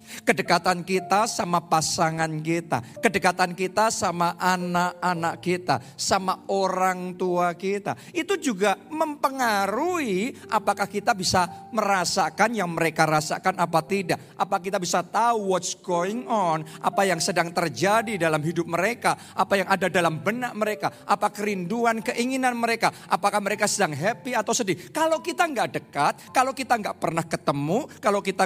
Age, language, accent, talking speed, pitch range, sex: 40-59, Indonesian, native, 140 wpm, 175-240 Hz, male